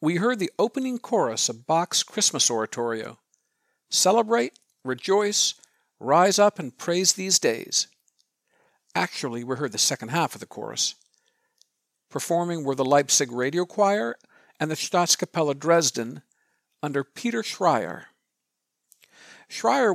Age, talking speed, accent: 50-69, 120 wpm, American